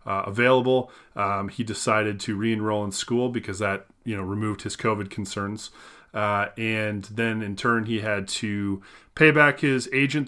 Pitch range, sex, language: 105-130 Hz, male, English